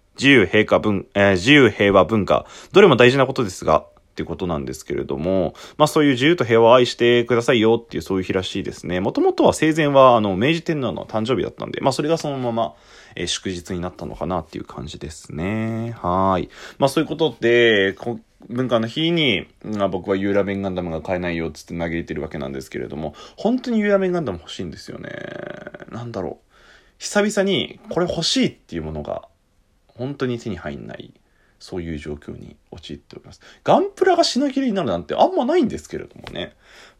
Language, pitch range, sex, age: Japanese, 85-135 Hz, male, 20-39